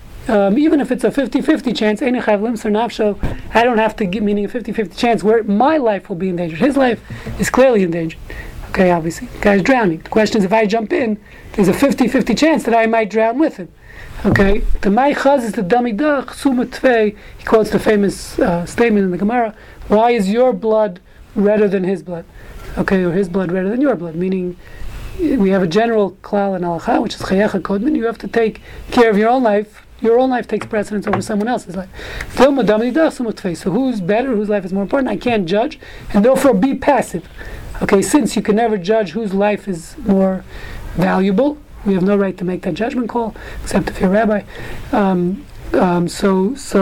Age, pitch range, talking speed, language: 30-49, 195-240 Hz, 185 wpm, English